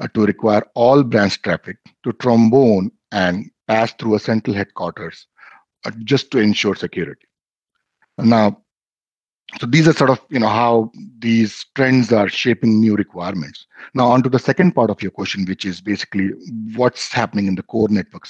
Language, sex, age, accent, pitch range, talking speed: English, male, 50-69, Indian, 100-125 Hz, 165 wpm